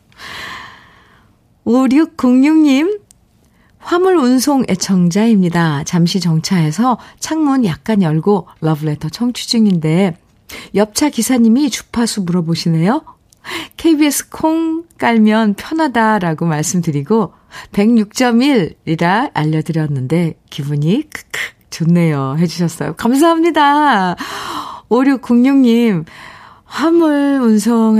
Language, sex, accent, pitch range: Korean, female, native, 165-240 Hz